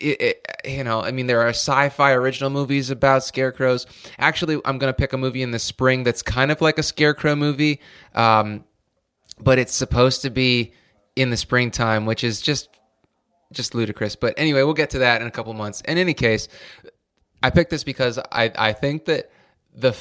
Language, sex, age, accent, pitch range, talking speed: English, male, 20-39, American, 115-145 Hz, 195 wpm